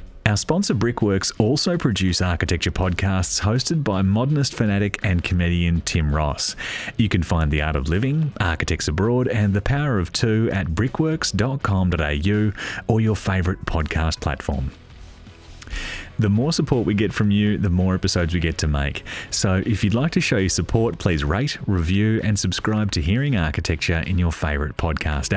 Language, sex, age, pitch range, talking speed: English, male, 30-49, 85-110 Hz, 165 wpm